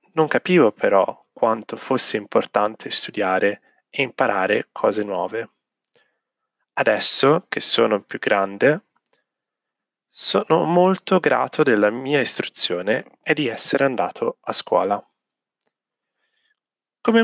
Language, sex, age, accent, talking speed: Italian, male, 30-49, native, 100 wpm